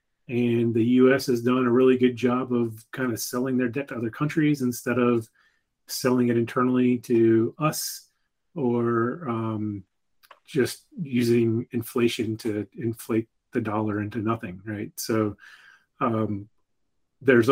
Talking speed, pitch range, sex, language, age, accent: 135 wpm, 115-135 Hz, male, English, 30-49, American